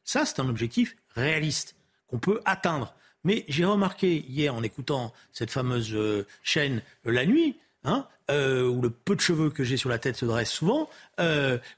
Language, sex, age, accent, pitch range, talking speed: French, male, 50-69, French, 150-240 Hz, 180 wpm